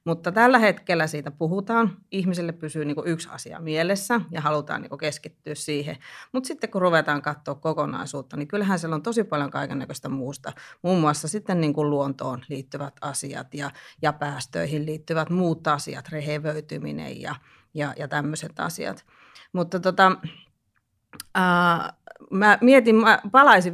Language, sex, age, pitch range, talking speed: Finnish, female, 30-49, 155-210 Hz, 125 wpm